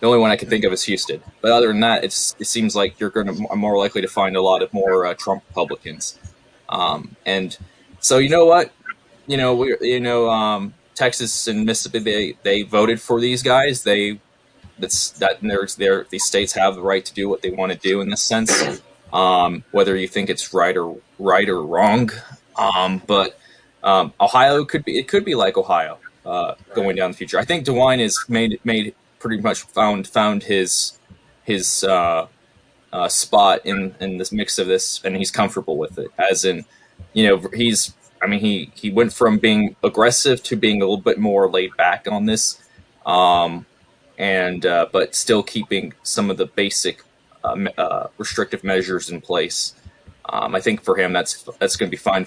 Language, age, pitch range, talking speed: English, 20-39, 95-120 Hz, 200 wpm